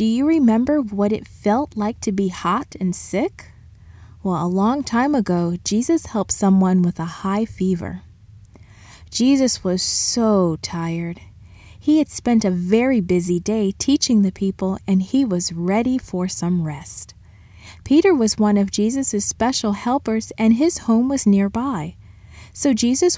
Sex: female